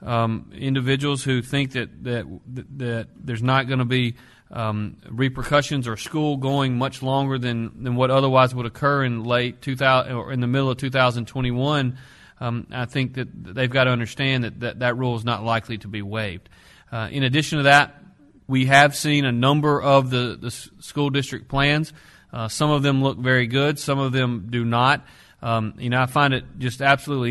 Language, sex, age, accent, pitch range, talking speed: English, male, 40-59, American, 120-135 Hz, 190 wpm